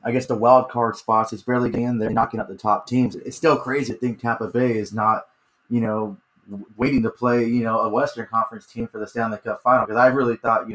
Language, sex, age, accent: English, male, 20-39, American